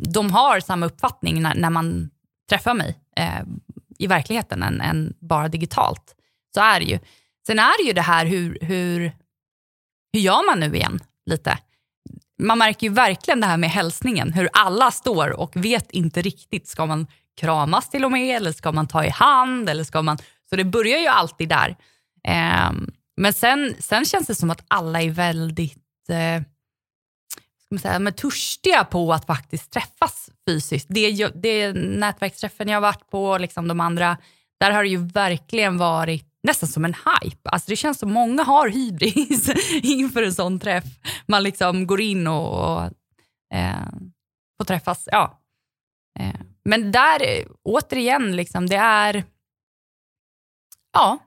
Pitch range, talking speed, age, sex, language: 165-215 Hz, 160 wpm, 20-39, female, Swedish